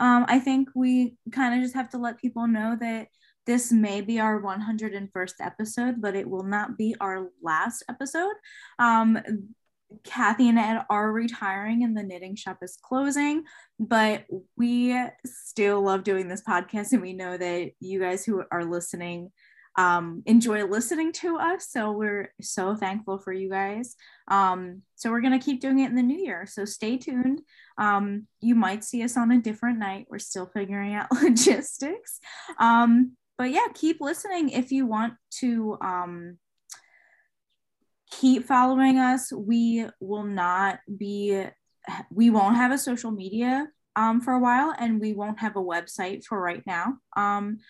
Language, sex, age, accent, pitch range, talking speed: English, female, 10-29, American, 195-250 Hz, 165 wpm